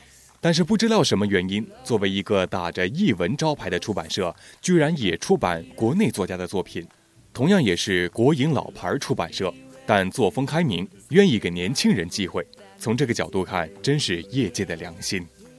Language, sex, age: Chinese, male, 20-39